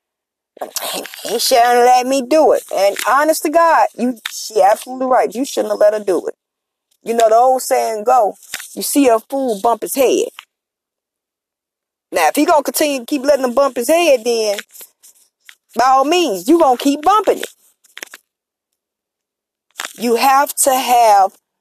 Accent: American